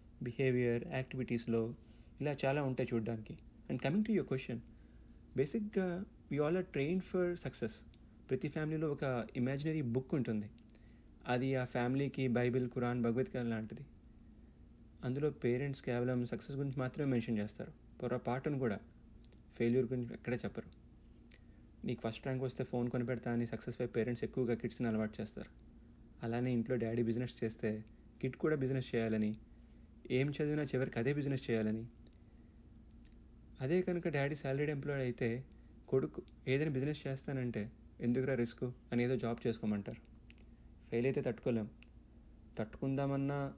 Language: Telugu